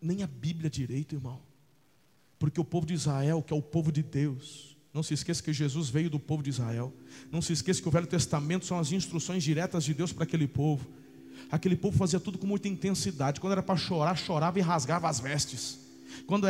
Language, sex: Portuguese, male